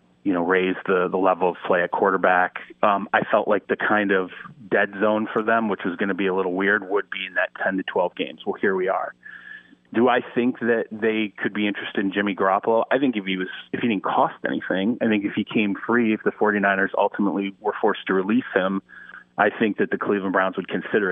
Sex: male